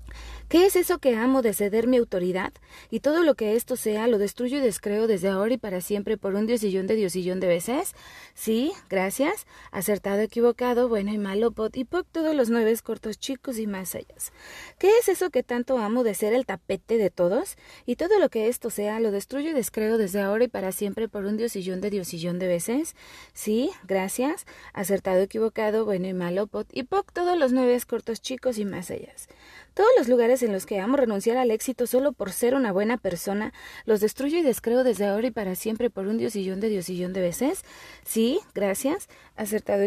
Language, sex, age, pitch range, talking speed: Spanish, female, 30-49, 195-255 Hz, 205 wpm